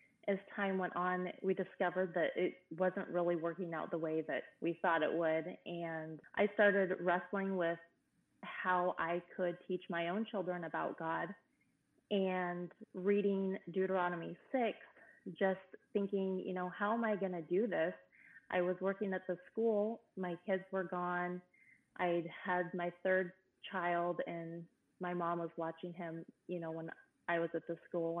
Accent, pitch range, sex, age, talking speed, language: American, 170-195 Hz, female, 20-39, 165 wpm, English